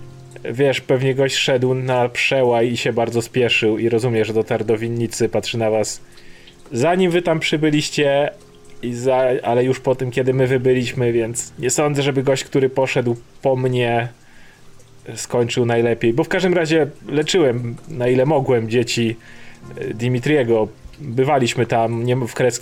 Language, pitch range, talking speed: Polish, 115-140 Hz, 155 wpm